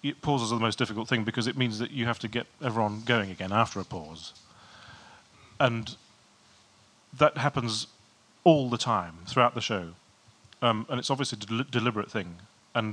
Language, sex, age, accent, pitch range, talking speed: English, male, 30-49, British, 105-135 Hz, 175 wpm